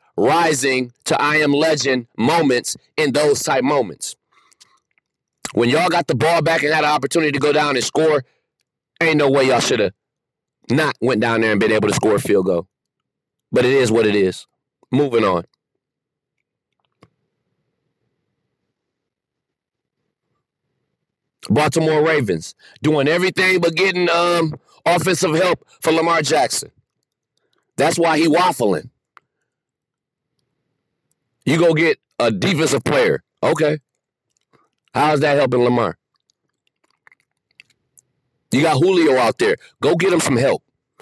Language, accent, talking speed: English, American, 130 wpm